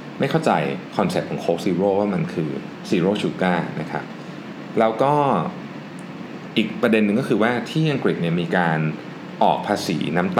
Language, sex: Thai, male